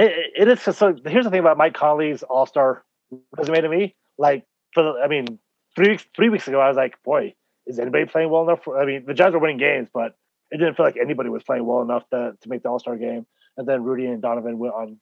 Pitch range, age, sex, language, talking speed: 125-160 Hz, 30-49, male, English, 265 wpm